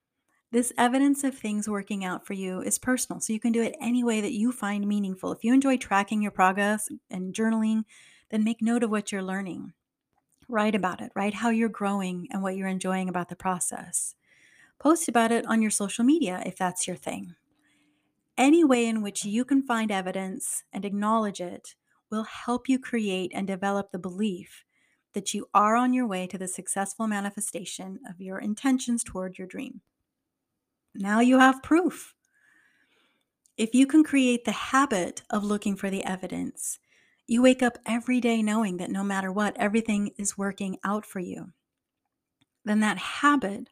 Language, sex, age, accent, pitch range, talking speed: English, female, 30-49, American, 195-240 Hz, 180 wpm